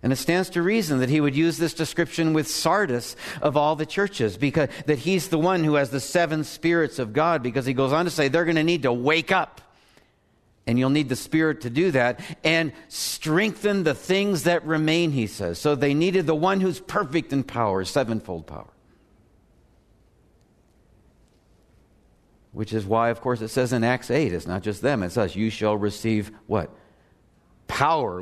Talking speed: 190 wpm